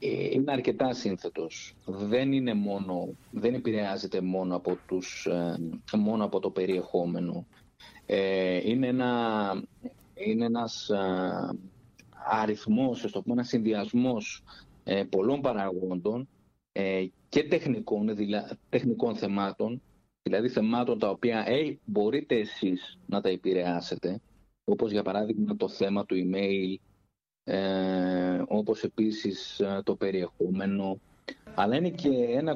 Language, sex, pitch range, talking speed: Greek, male, 95-130 Hz, 100 wpm